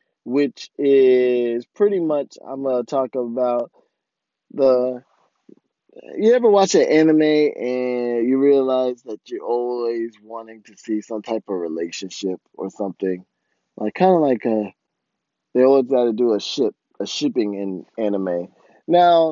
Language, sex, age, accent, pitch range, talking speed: English, male, 20-39, American, 115-145 Hz, 145 wpm